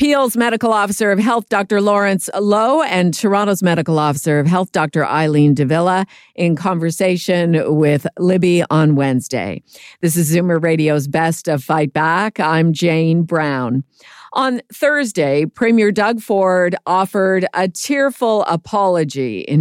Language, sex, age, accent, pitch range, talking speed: English, female, 50-69, American, 155-195 Hz, 135 wpm